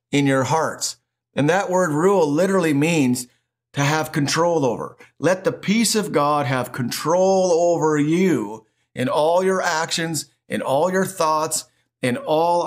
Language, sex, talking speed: English, male, 150 wpm